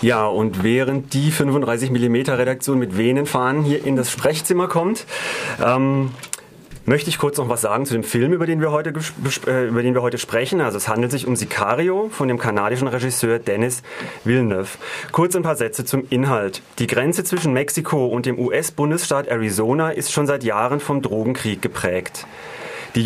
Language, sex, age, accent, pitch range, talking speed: German, male, 30-49, German, 120-155 Hz, 170 wpm